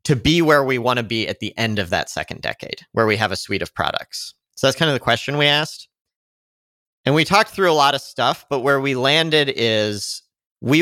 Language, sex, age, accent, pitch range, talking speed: English, male, 40-59, American, 110-140 Hz, 240 wpm